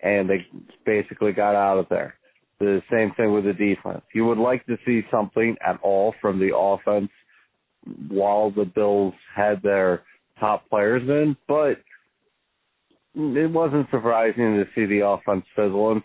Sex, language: male, English